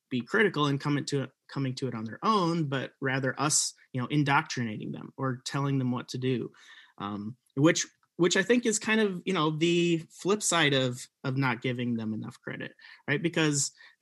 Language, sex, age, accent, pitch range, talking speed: English, male, 30-49, American, 130-175 Hz, 200 wpm